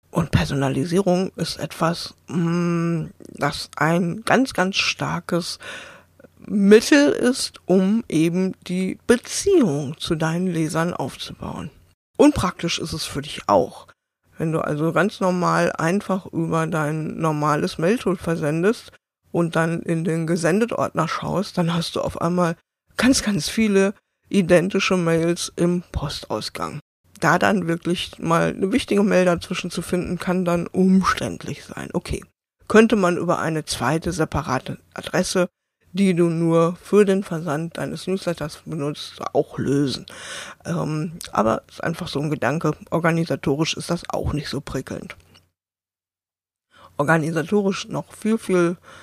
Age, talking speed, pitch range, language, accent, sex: 50-69, 130 wpm, 160-190 Hz, German, German, female